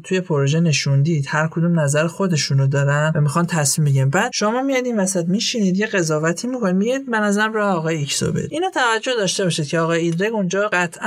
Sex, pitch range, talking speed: male, 145-200 Hz, 195 wpm